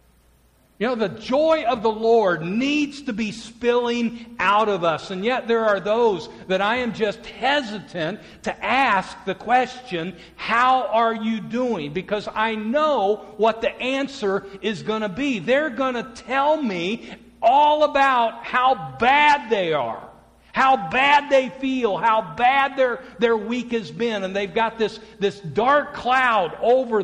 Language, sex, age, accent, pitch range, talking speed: English, male, 50-69, American, 160-235 Hz, 160 wpm